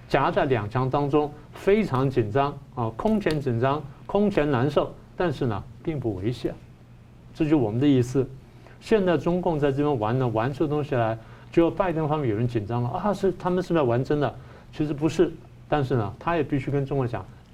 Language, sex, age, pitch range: Chinese, male, 50-69, 120-160 Hz